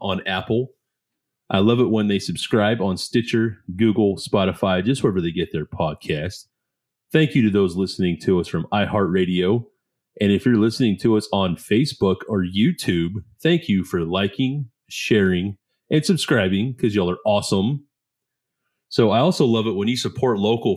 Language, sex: English, male